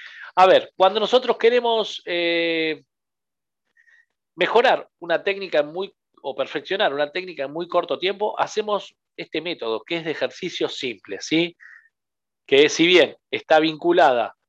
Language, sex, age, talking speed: Spanish, male, 40-59, 125 wpm